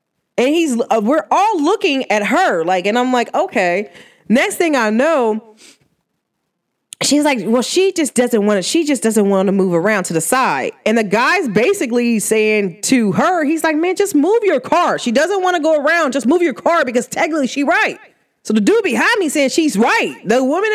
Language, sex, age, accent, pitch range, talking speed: English, female, 20-39, American, 210-330 Hz, 210 wpm